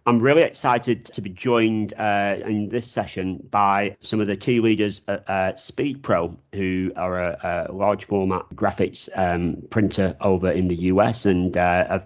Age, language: 40-59, English